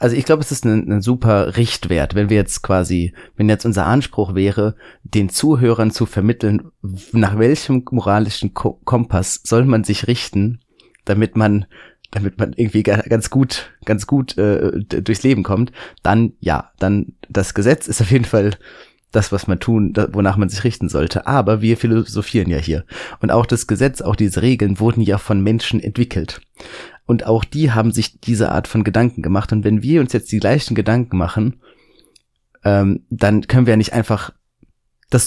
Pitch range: 100-120 Hz